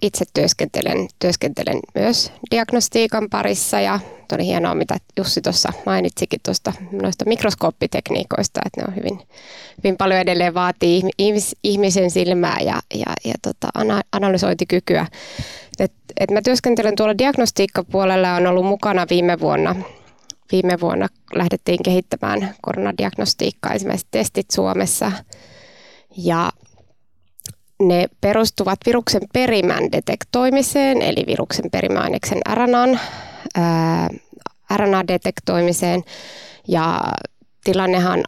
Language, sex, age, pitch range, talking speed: Finnish, female, 20-39, 175-220 Hz, 95 wpm